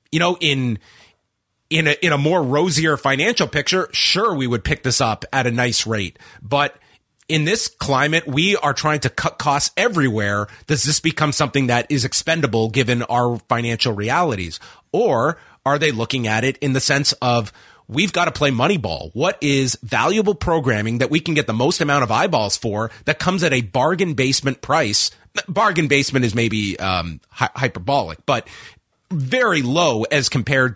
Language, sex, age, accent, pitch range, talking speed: English, male, 30-49, American, 115-155 Hz, 180 wpm